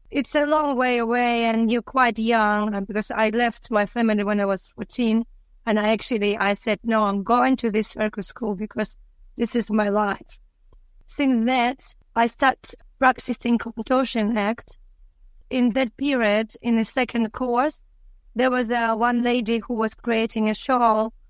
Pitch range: 215-245 Hz